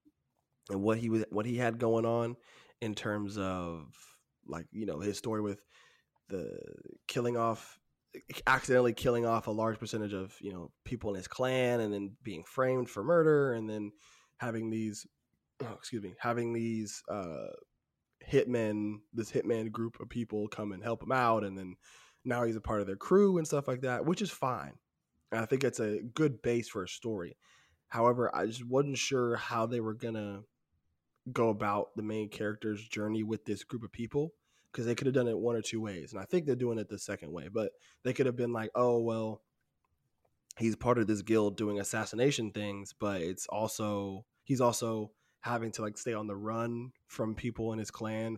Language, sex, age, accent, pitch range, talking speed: English, male, 20-39, American, 105-120 Hz, 195 wpm